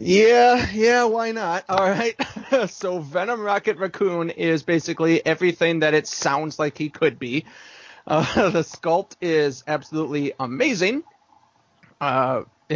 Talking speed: 125 wpm